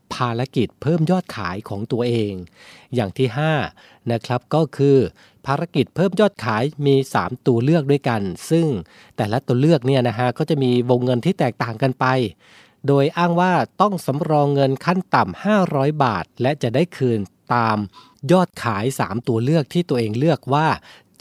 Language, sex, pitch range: Thai, male, 115-150 Hz